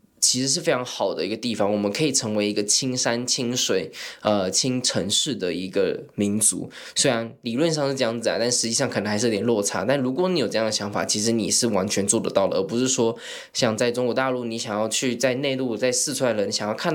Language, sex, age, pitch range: Chinese, male, 10-29, 110-140 Hz